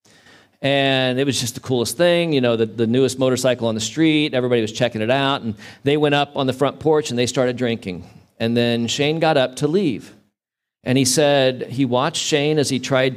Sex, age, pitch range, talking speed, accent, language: male, 40-59, 110-135 Hz, 225 wpm, American, English